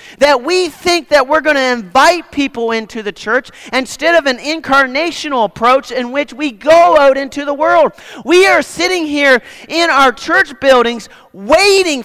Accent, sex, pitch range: American, male, 235-330 Hz